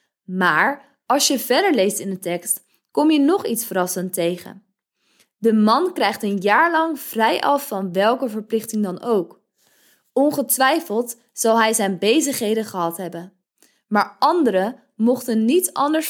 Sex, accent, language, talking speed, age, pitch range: female, Dutch, Dutch, 145 wpm, 20-39, 195-245 Hz